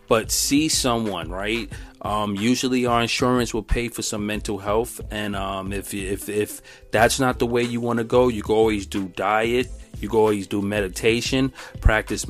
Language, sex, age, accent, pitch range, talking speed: English, male, 30-49, American, 105-120 Hz, 185 wpm